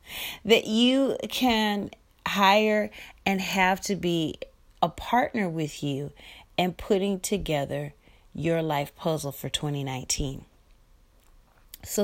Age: 40-59